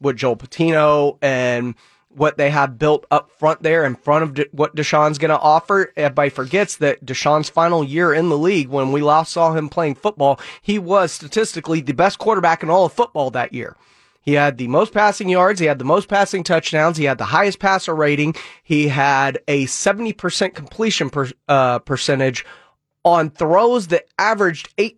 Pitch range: 145-190 Hz